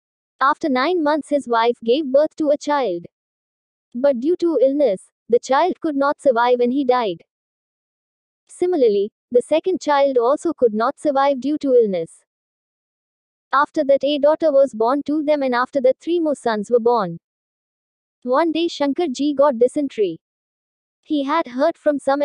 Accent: native